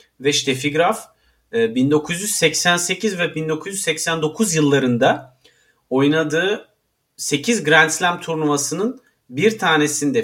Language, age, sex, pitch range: Turkish, 40-59, male, 140-215 Hz